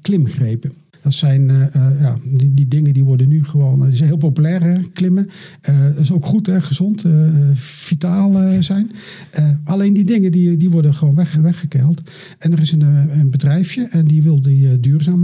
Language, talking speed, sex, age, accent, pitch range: Dutch, 175 wpm, male, 50-69, Dutch, 145-175 Hz